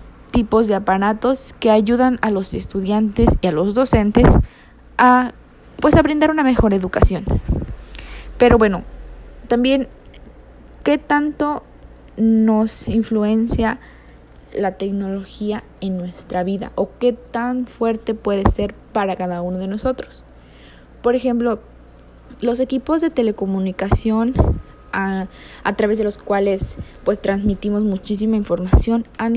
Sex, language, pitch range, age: female, Spanish, 195-230 Hz, 20-39